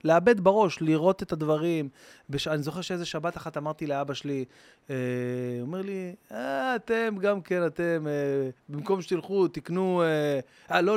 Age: 20-39